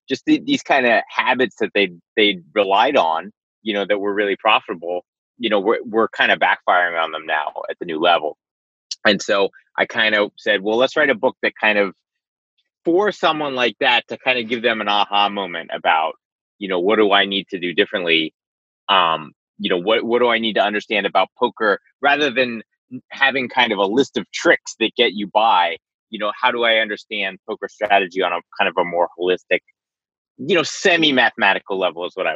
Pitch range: 100-155 Hz